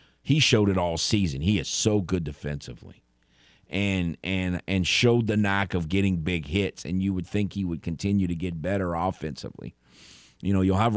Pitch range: 80-110 Hz